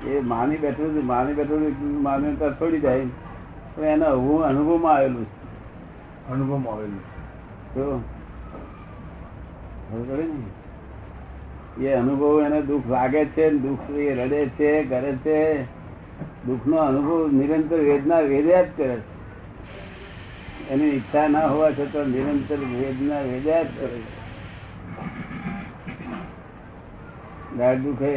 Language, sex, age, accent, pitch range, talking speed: Gujarati, male, 60-79, native, 110-145 Hz, 40 wpm